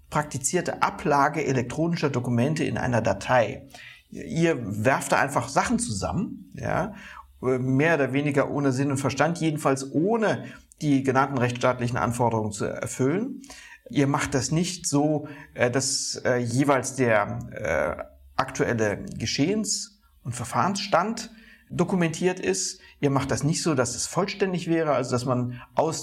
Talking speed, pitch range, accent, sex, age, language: 125 wpm, 125-155 Hz, German, male, 60-79, German